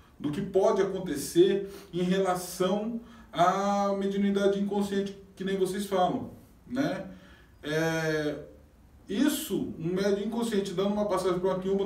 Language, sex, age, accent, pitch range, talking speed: Portuguese, male, 20-39, Brazilian, 180-245 Hz, 120 wpm